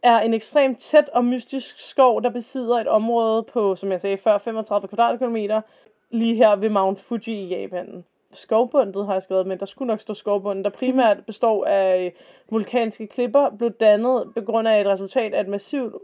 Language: Danish